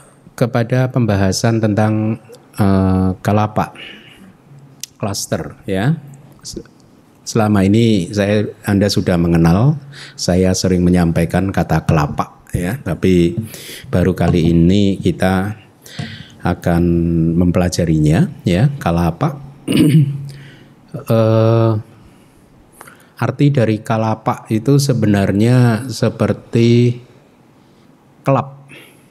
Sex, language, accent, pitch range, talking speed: male, Indonesian, native, 90-125 Hz, 75 wpm